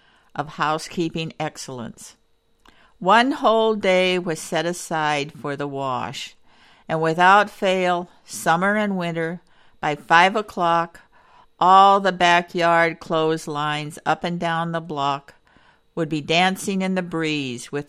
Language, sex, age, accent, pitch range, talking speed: English, female, 60-79, American, 160-190 Hz, 125 wpm